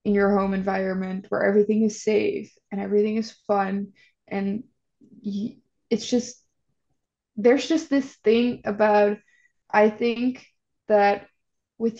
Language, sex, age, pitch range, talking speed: English, female, 20-39, 200-230 Hz, 125 wpm